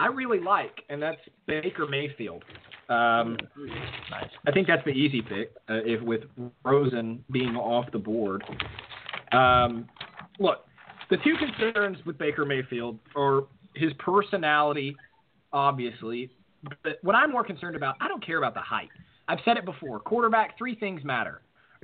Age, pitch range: 20-39, 135-195 Hz